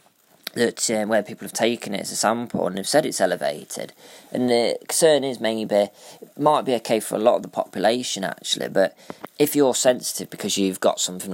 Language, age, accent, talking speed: English, 20-39, British, 205 wpm